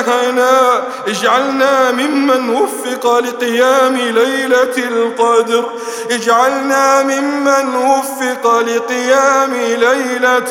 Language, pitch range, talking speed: English, 235-255 Hz, 65 wpm